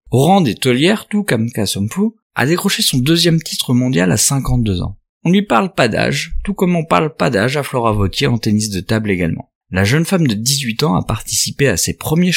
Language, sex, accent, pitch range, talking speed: French, male, French, 100-160 Hz, 225 wpm